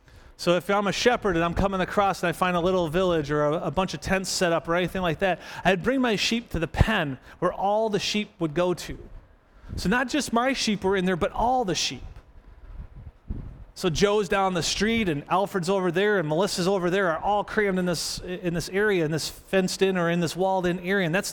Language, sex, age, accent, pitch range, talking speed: English, male, 30-49, American, 165-205 Hz, 235 wpm